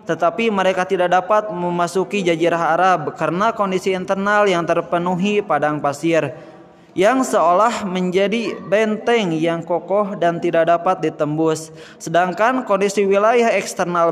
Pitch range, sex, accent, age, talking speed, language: 165-205 Hz, male, native, 20-39, 120 wpm, Indonesian